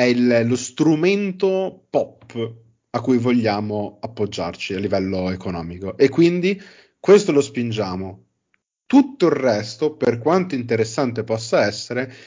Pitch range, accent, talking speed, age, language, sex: 110-130 Hz, native, 120 wpm, 30-49, Italian, male